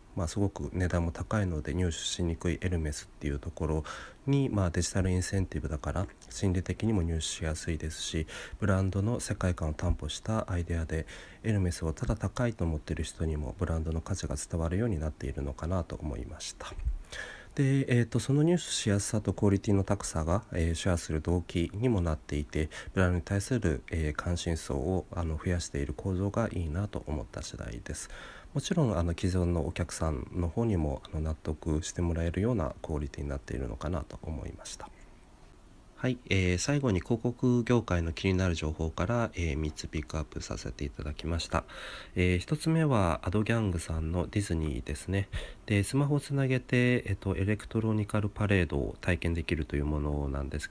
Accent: native